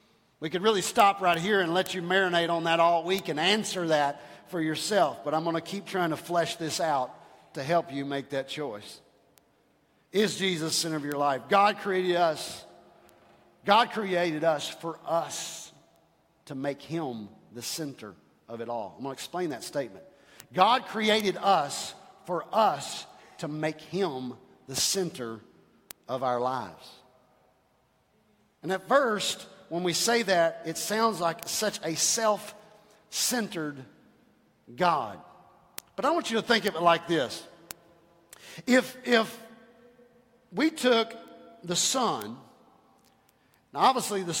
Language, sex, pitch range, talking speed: English, male, 165-215 Hz, 150 wpm